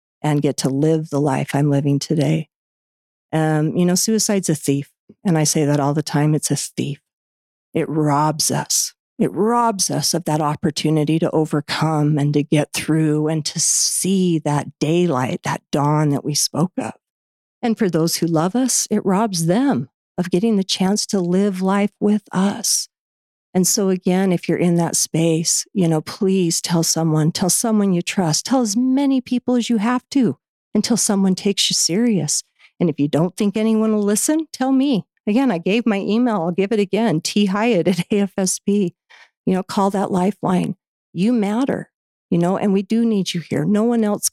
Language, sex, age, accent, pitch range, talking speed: English, female, 50-69, American, 155-205 Hz, 190 wpm